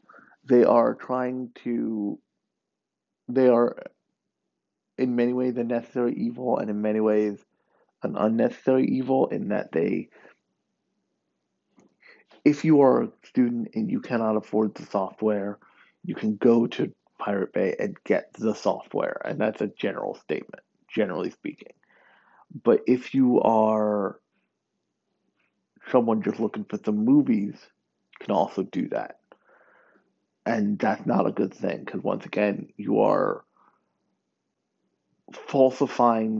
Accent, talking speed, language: American, 125 wpm, English